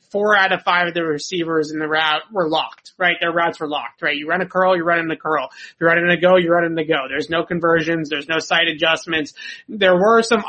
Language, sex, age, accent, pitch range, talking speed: English, male, 30-49, American, 155-180 Hz, 270 wpm